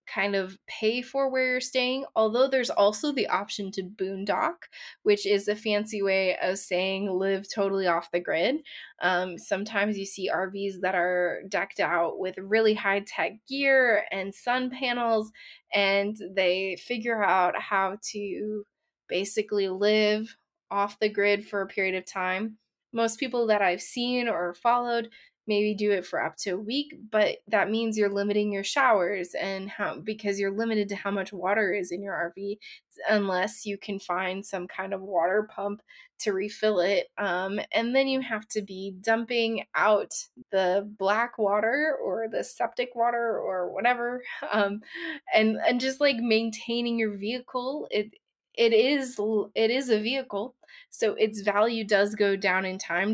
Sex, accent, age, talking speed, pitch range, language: female, American, 20-39, 165 wpm, 195-230 Hz, English